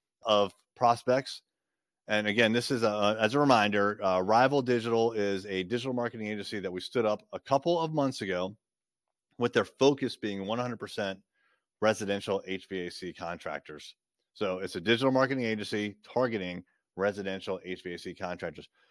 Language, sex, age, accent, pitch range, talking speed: English, male, 30-49, American, 100-130 Hz, 140 wpm